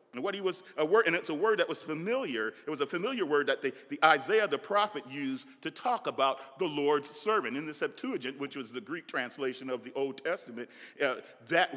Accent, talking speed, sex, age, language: American, 230 wpm, male, 40-59, English